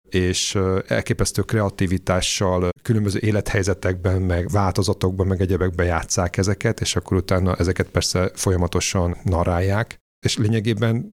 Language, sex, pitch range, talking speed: Hungarian, male, 85-100 Hz, 110 wpm